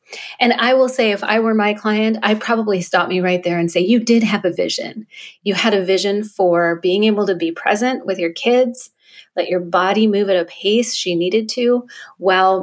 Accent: American